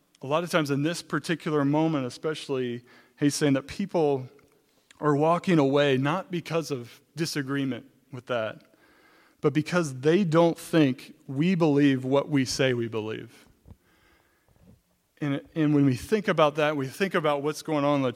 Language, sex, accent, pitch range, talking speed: English, male, American, 140-180 Hz, 160 wpm